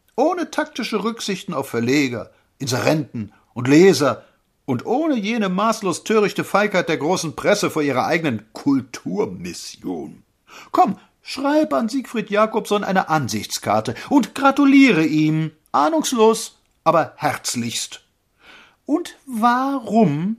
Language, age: German, 50-69